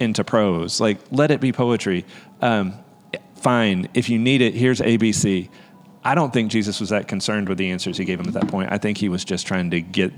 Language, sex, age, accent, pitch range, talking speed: English, male, 30-49, American, 95-125 Hz, 230 wpm